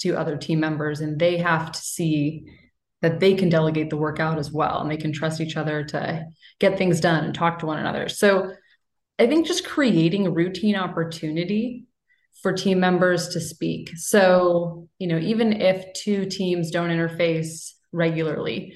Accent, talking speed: American, 180 wpm